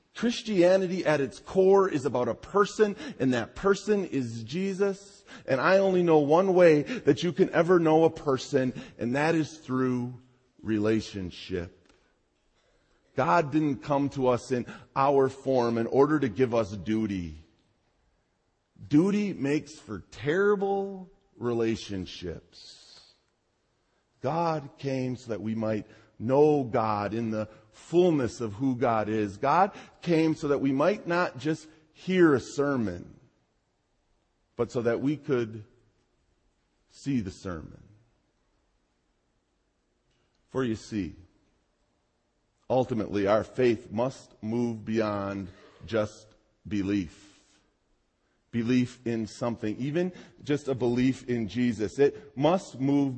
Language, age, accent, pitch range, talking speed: English, 40-59, American, 110-150 Hz, 120 wpm